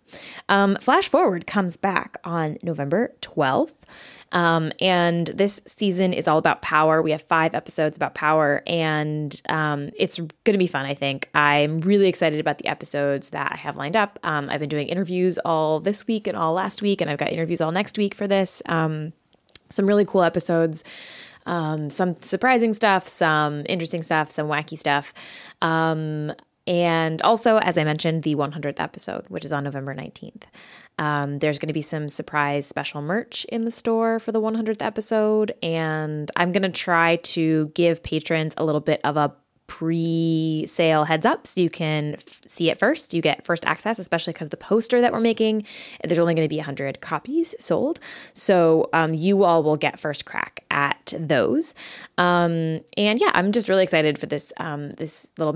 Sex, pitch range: female, 155-195 Hz